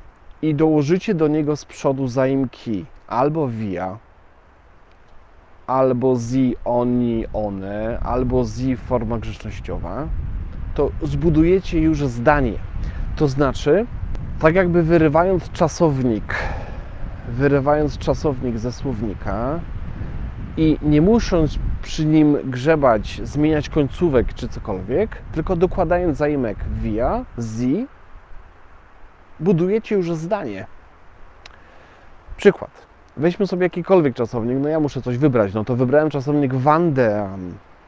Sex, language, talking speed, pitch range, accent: male, Polish, 100 wpm, 110-160 Hz, native